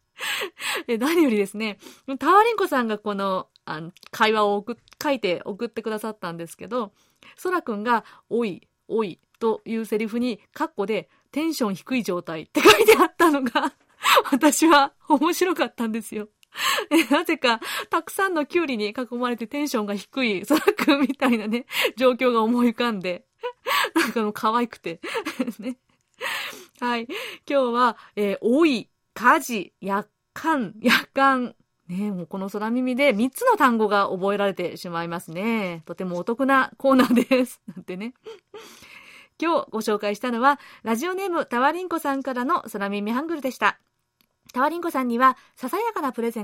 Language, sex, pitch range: Japanese, female, 215-300 Hz